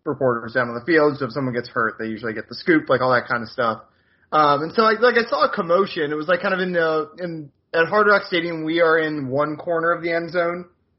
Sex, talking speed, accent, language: male, 280 wpm, American, English